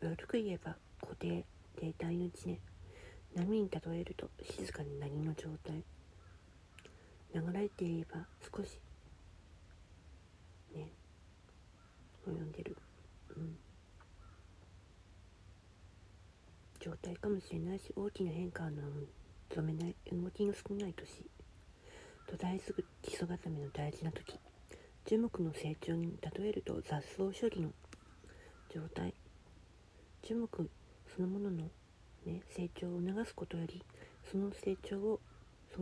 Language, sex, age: Japanese, female, 40-59